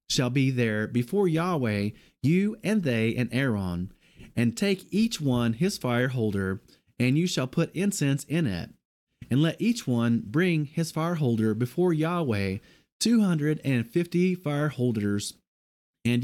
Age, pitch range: 30-49, 115-170 Hz